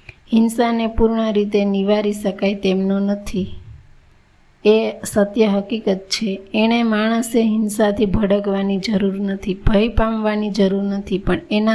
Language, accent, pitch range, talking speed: Gujarati, native, 195-220 Hz, 95 wpm